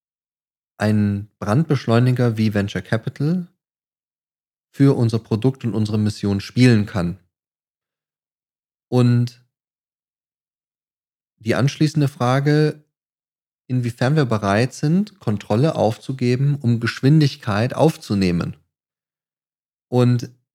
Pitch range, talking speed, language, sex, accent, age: 105-125 Hz, 80 wpm, German, male, German, 30-49